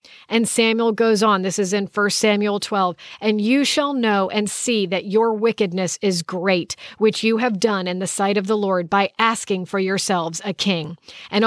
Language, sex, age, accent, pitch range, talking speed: English, female, 40-59, American, 195-245 Hz, 200 wpm